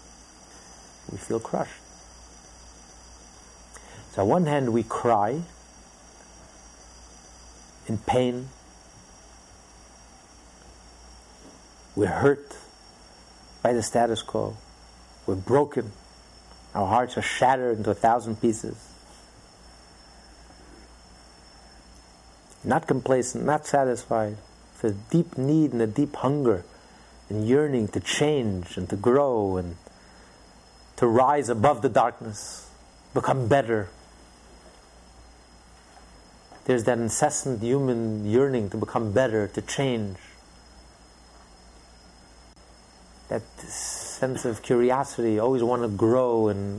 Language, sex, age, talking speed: English, male, 60-79, 95 wpm